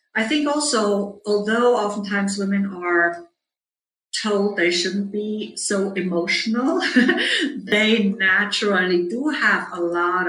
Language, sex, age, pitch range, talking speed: English, female, 50-69, 170-205 Hz, 110 wpm